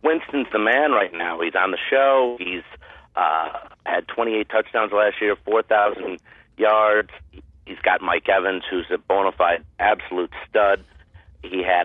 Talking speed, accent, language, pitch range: 150 wpm, American, English, 100-135 Hz